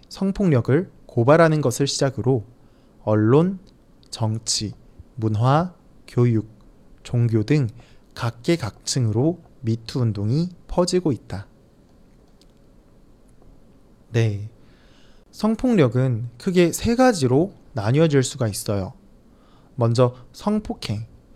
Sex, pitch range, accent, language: male, 115-165 Hz, Korean, Chinese